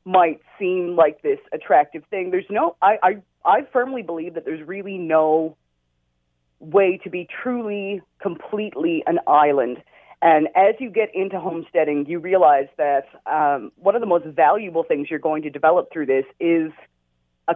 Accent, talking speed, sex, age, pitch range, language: American, 165 wpm, female, 30-49, 150-200 Hz, English